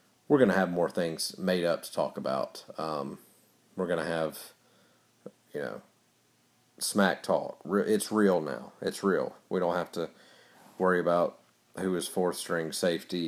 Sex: male